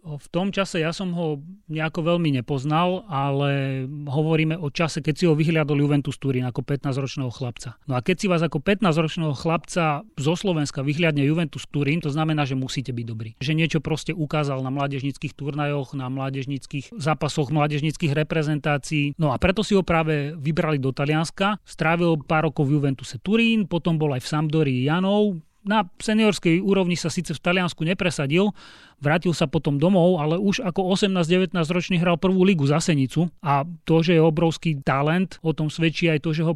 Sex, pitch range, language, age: male, 145-175 Hz, Slovak, 30-49